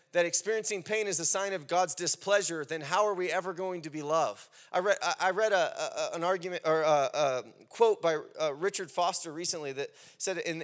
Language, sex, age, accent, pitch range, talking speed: English, male, 30-49, American, 160-215 Hz, 210 wpm